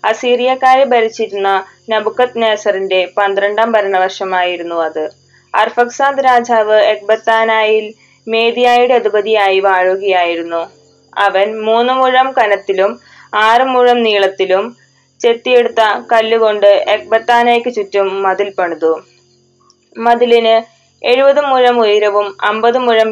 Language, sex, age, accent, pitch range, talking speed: Malayalam, female, 20-39, native, 195-230 Hz, 75 wpm